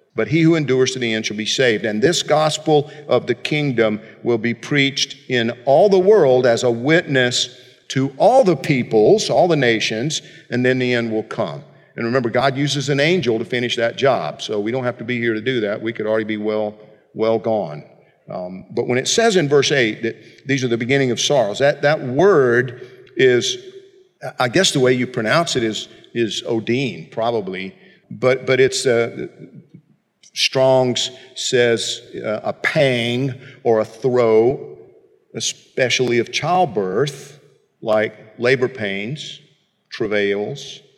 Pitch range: 115-150 Hz